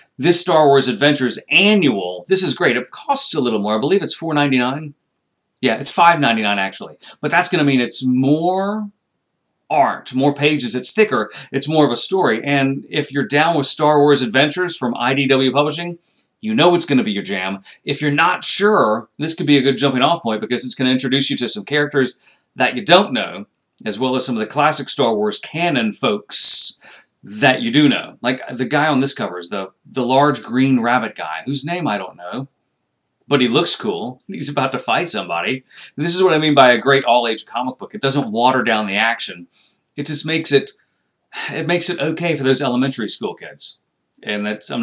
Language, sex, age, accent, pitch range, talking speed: English, male, 40-59, American, 120-155 Hz, 210 wpm